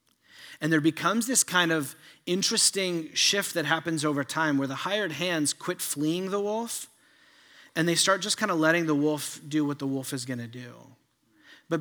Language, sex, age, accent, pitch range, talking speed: English, male, 30-49, American, 130-155 Hz, 190 wpm